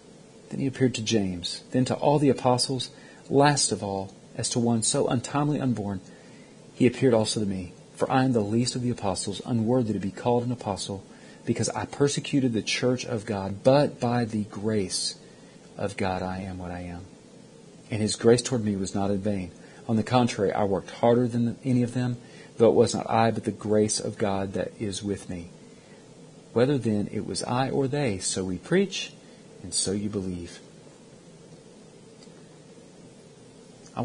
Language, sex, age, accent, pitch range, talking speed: English, male, 40-59, American, 100-130 Hz, 185 wpm